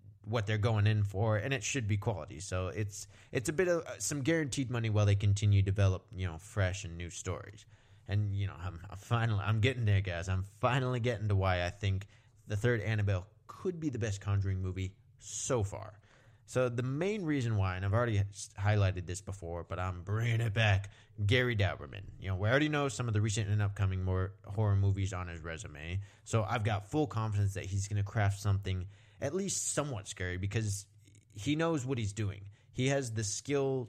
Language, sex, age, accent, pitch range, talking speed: English, male, 20-39, American, 100-120 Hz, 210 wpm